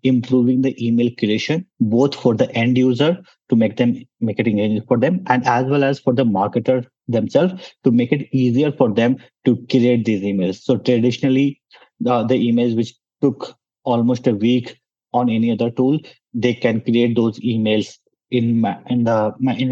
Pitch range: 110-130 Hz